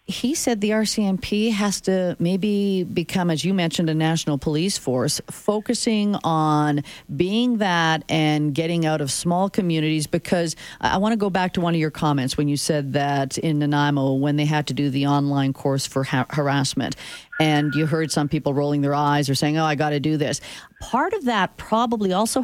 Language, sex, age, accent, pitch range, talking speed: English, female, 40-59, American, 150-195 Hz, 195 wpm